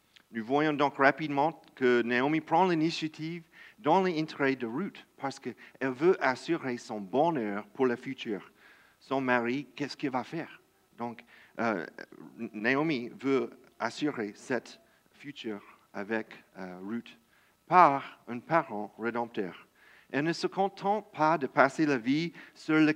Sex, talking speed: male, 135 wpm